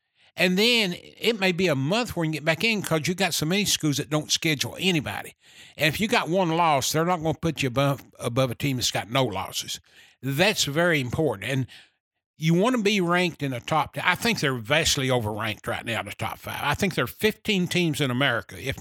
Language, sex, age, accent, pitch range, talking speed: English, male, 60-79, American, 130-175 Hz, 245 wpm